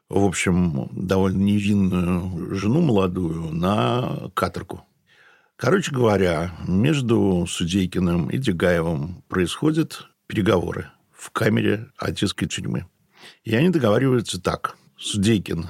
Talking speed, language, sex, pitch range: 95 wpm, Russian, male, 90-110 Hz